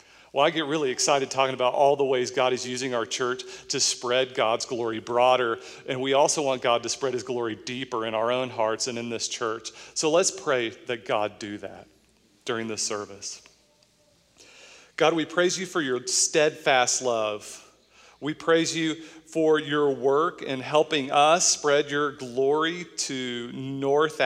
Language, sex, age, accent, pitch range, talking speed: English, male, 40-59, American, 125-155 Hz, 175 wpm